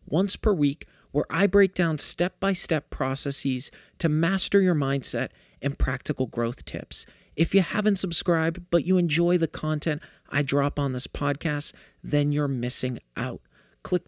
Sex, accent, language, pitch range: male, American, English, 140-195 Hz